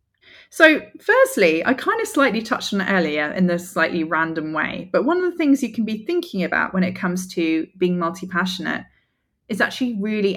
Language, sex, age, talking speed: English, female, 20-39, 195 wpm